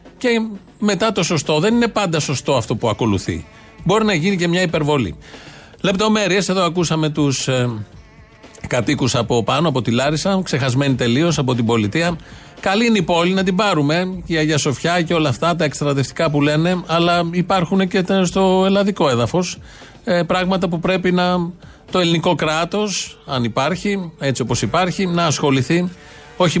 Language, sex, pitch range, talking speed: Greek, male, 130-180 Hz, 160 wpm